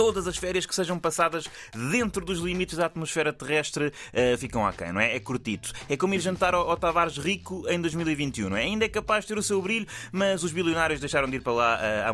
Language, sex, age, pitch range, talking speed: Portuguese, male, 20-39, 130-195 Hz, 230 wpm